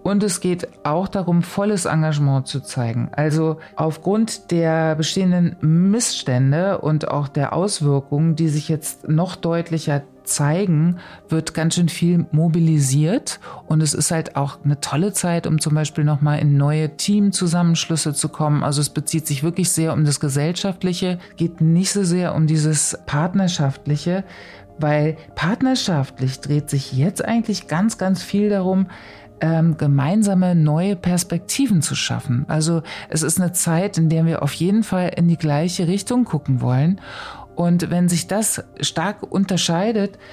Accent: German